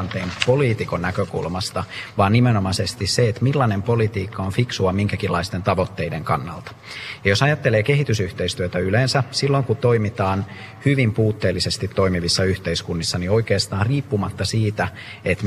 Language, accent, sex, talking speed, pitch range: Finnish, native, male, 115 wpm, 95-110 Hz